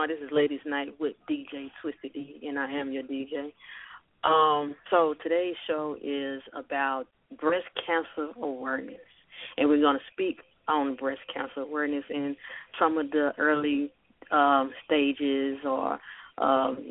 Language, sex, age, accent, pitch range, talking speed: English, female, 30-49, American, 140-160 Hz, 140 wpm